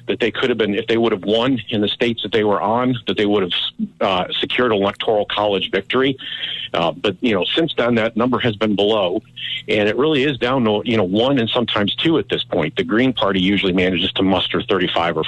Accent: American